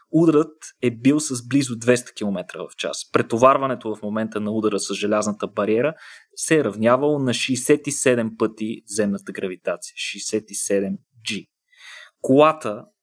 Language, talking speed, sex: Bulgarian, 130 wpm, male